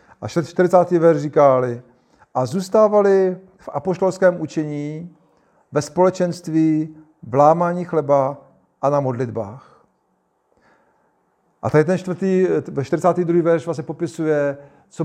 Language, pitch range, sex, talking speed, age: Czech, 145-175 Hz, male, 100 wpm, 40-59